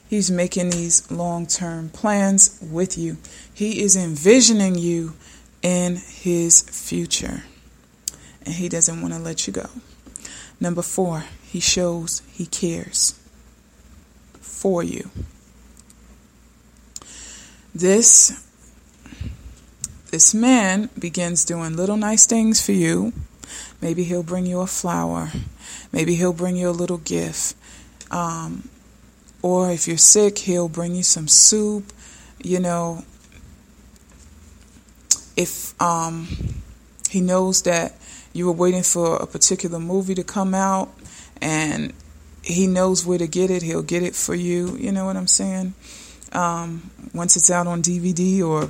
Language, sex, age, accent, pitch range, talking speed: English, female, 20-39, American, 165-190 Hz, 130 wpm